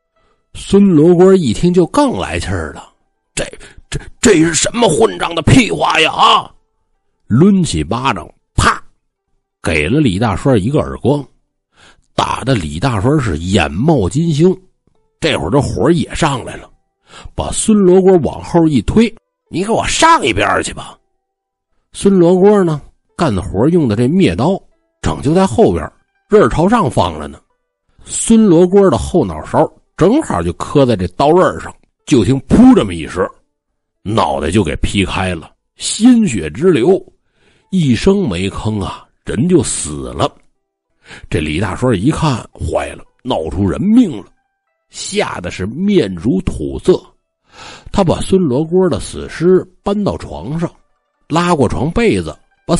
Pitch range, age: 120-200 Hz, 50-69